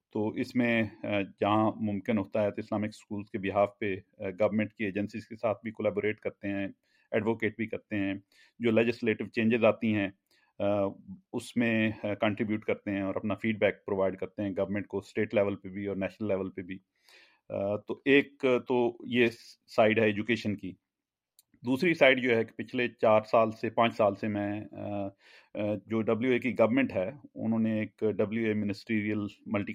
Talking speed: 180 wpm